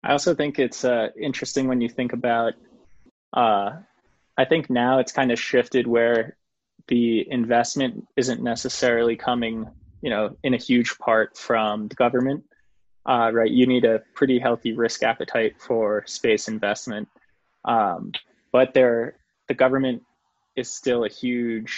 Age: 20-39